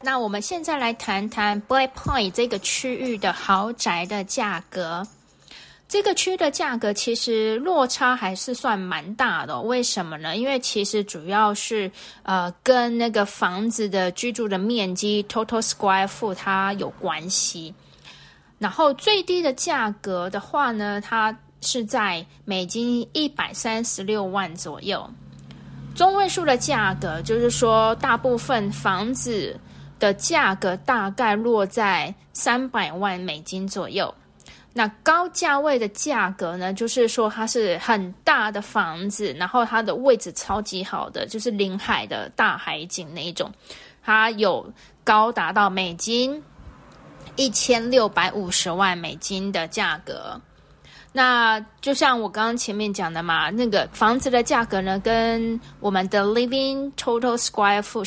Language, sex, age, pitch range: Chinese, female, 20-39, 190-240 Hz